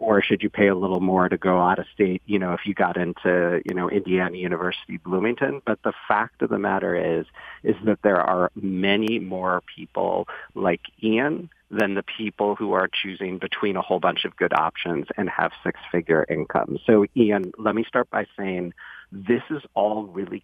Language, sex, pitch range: English, male, 90-110 Hz